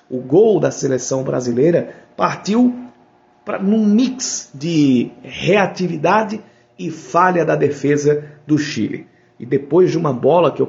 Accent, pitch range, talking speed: Brazilian, 130-180 Hz, 130 wpm